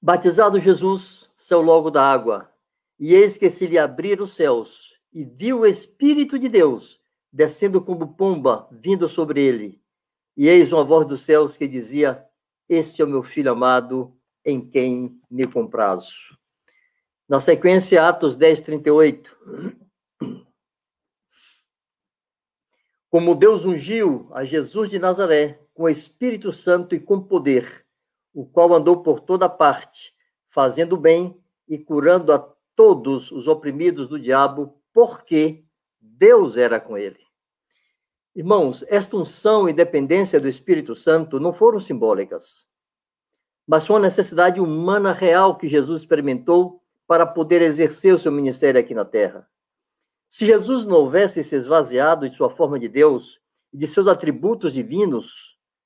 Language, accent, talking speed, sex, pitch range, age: Portuguese, Brazilian, 140 wpm, male, 150-200 Hz, 60-79